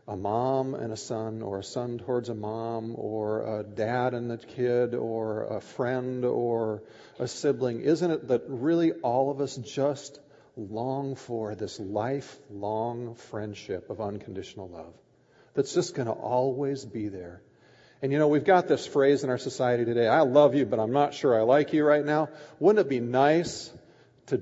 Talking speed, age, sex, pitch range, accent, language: 180 wpm, 50-69, male, 115-145 Hz, American, English